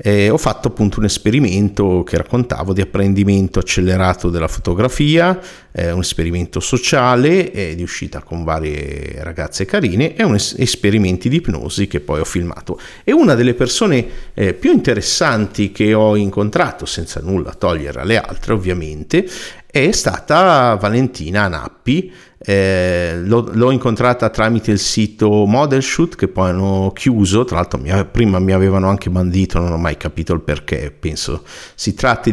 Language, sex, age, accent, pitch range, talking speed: Italian, male, 50-69, native, 90-115 Hz, 155 wpm